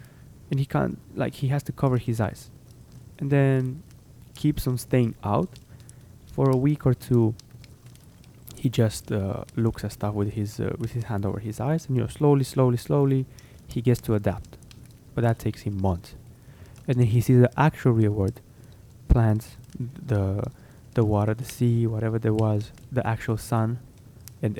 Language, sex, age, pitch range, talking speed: English, male, 20-39, 110-130 Hz, 175 wpm